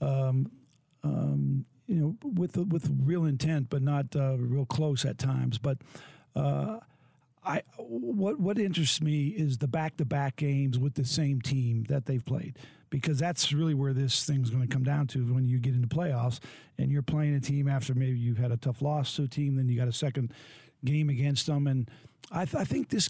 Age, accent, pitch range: 50-69, American, 135-155 Hz